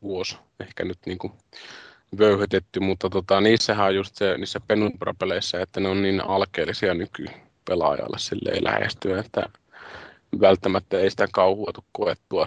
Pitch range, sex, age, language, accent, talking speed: 95-105 Hz, male, 20-39, Finnish, native, 120 wpm